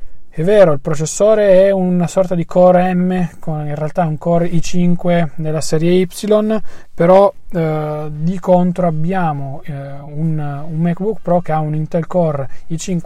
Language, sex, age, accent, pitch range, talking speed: Italian, male, 30-49, native, 145-180 Hz, 160 wpm